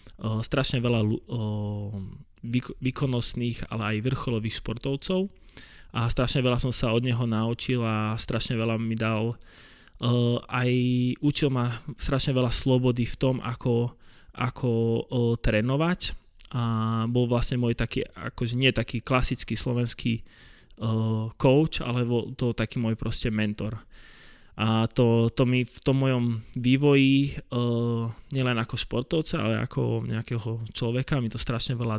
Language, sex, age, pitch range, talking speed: Slovak, male, 20-39, 110-125 Hz, 135 wpm